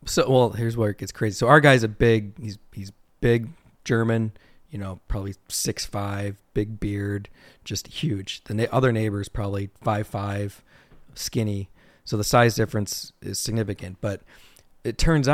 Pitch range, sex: 100-115 Hz, male